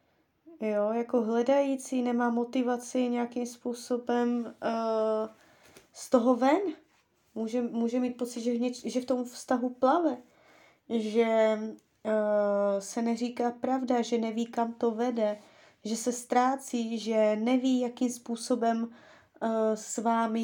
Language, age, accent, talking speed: Czech, 20-39, native, 110 wpm